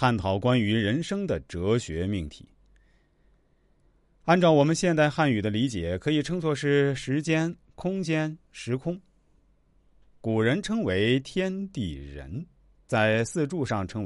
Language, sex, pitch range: Chinese, male, 100-150 Hz